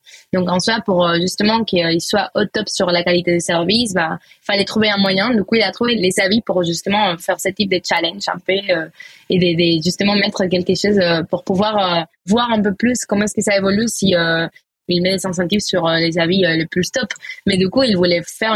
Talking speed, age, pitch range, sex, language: 240 wpm, 20-39, 180-220 Hz, female, French